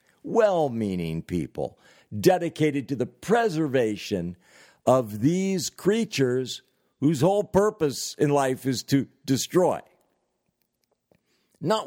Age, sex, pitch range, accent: 60-79, male, 125-180 Hz, American